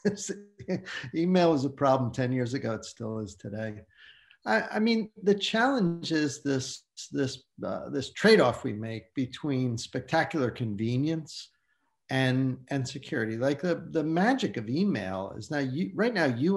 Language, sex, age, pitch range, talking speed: English, male, 50-69, 120-160 Hz, 150 wpm